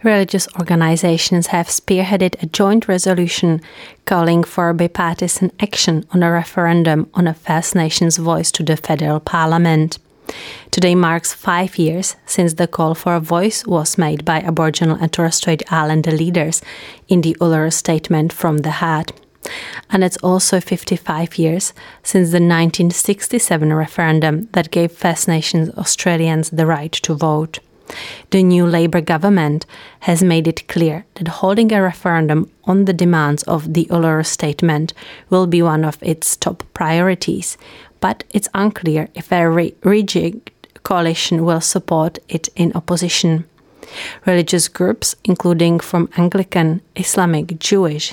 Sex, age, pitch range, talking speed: female, 30-49, 160-185 Hz, 140 wpm